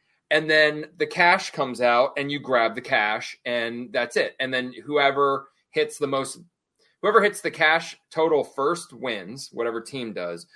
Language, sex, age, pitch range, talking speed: English, male, 20-39, 120-150 Hz, 170 wpm